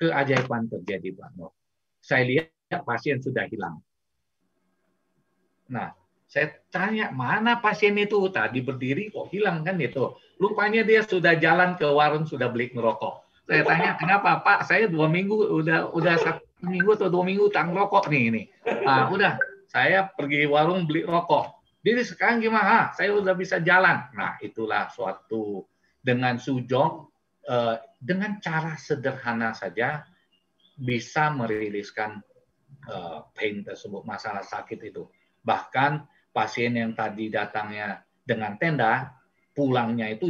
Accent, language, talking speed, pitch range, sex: native, Indonesian, 130 wpm, 115-180 Hz, male